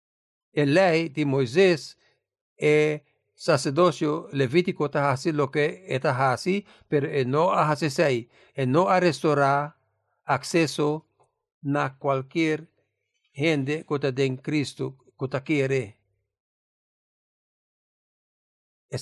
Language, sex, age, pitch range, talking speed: English, male, 60-79, 135-170 Hz, 95 wpm